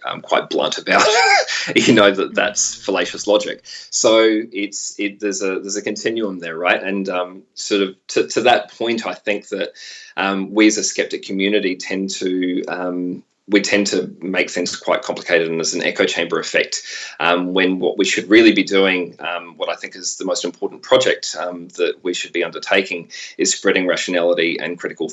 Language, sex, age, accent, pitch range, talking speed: English, male, 20-39, Australian, 85-110 Hz, 195 wpm